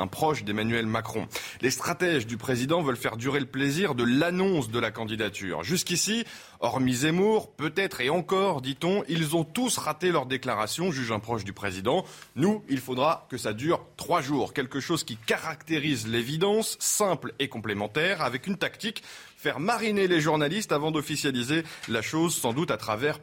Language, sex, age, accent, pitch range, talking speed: French, male, 30-49, French, 115-165 Hz, 175 wpm